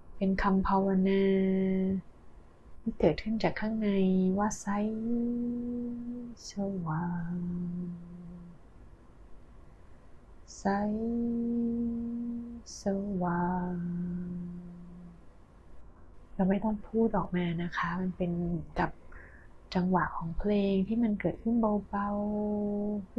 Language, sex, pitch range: Thai, female, 170-205 Hz